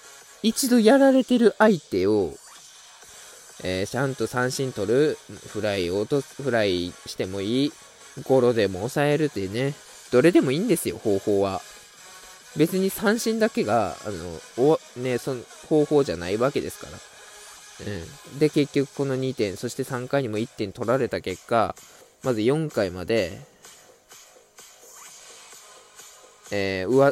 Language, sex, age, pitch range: Japanese, male, 20-39, 100-140 Hz